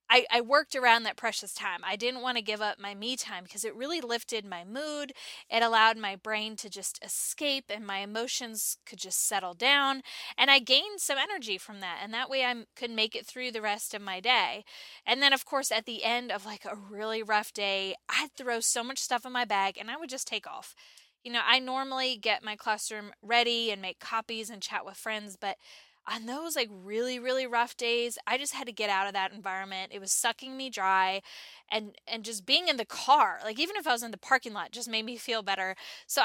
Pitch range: 210-255 Hz